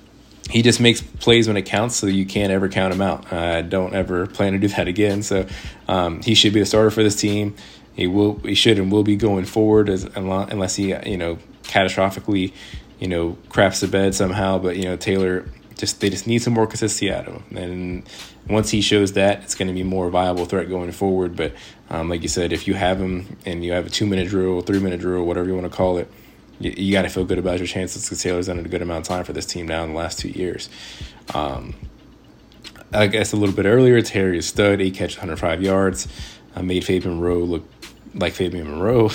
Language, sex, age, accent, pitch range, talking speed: English, male, 20-39, American, 90-105 Hz, 235 wpm